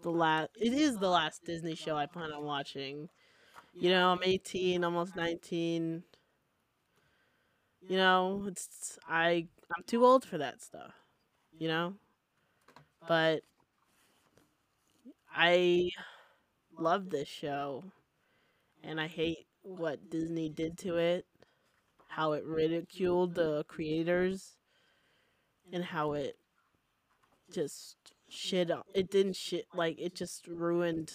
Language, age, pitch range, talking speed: English, 20-39, 155-180 Hz, 115 wpm